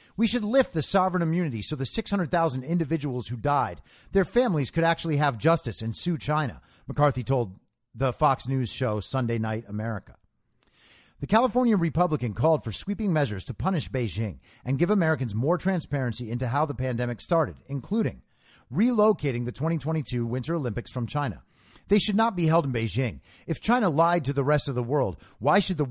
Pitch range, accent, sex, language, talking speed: 120-195 Hz, American, male, English, 180 wpm